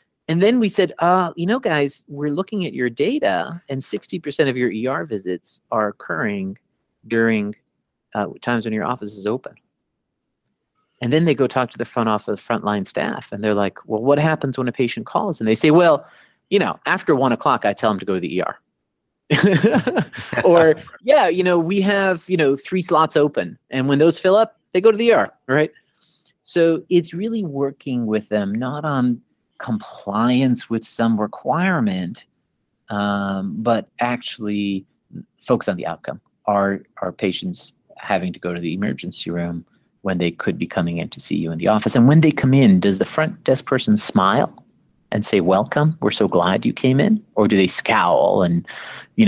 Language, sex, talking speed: English, male, 190 wpm